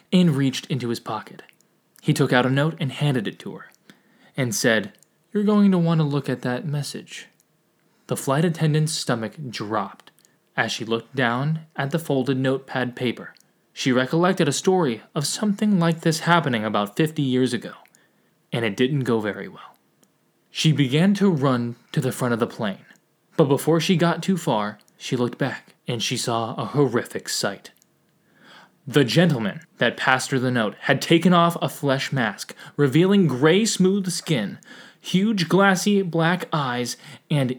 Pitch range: 125-170 Hz